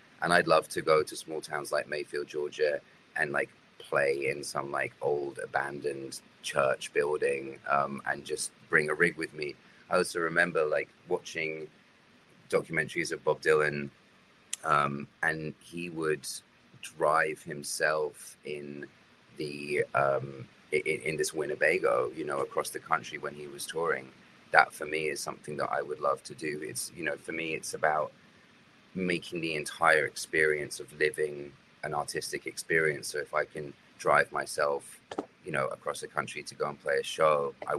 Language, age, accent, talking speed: English, 30-49, British, 165 wpm